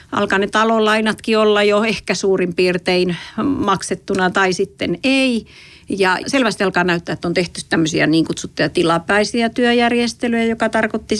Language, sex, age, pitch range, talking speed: Finnish, female, 40-59, 175-230 Hz, 140 wpm